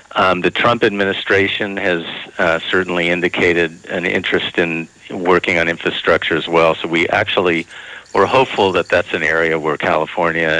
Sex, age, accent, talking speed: male, 50-69, American, 155 wpm